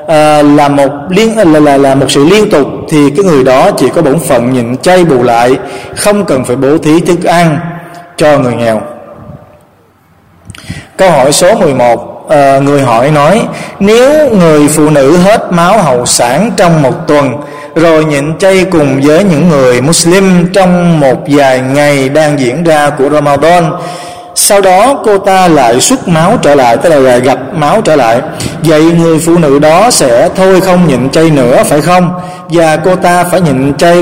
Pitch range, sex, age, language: 140-175 Hz, male, 20-39, Vietnamese